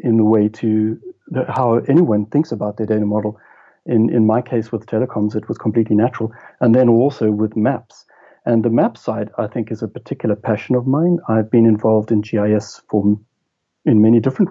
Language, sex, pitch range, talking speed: English, male, 105-115 Hz, 195 wpm